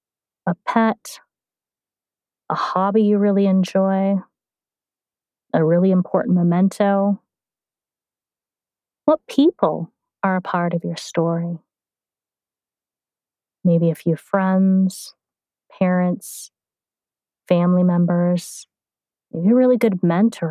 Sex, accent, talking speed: female, American, 90 wpm